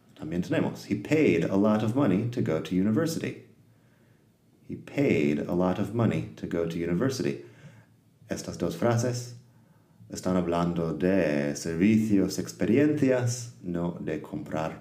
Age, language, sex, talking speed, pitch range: 30-49, Spanish, male, 135 wpm, 85-115 Hz